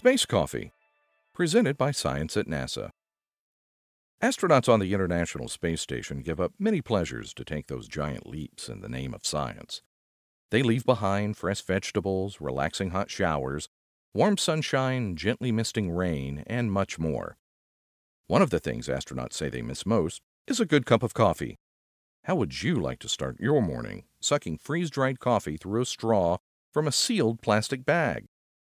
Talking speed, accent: 160 wpm, American